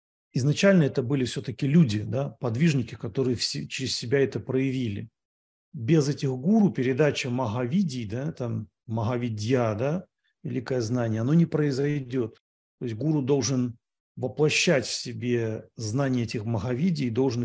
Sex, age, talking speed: male, 40-59, 130 wpm